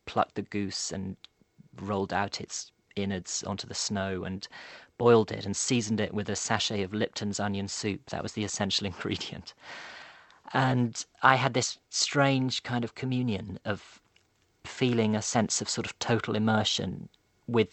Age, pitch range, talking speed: 40-59, 100-110 Hz, 160 wpm